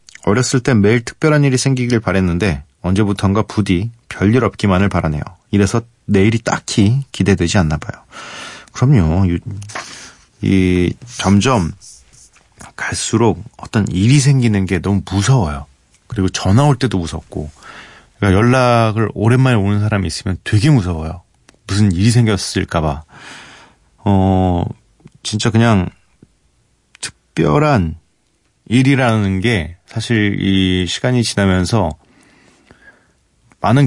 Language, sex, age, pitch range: Korean, male, 30-49, 90-115 Hz